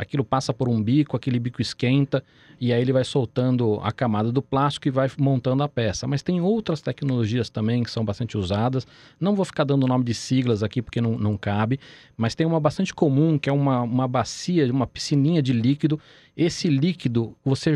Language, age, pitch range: Portuguese, 40-59, 120-155 Hz